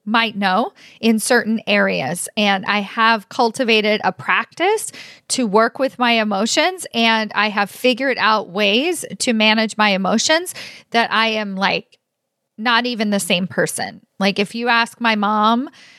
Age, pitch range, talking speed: 40-59, 210-255 Hz, 155 wpm